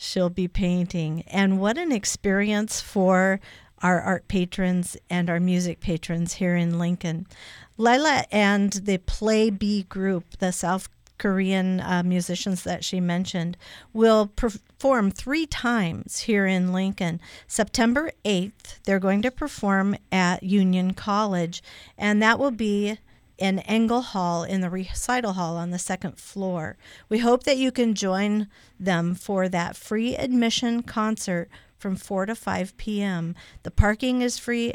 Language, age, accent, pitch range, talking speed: English, 50-69, American, 180-210 Hz, 145 wpm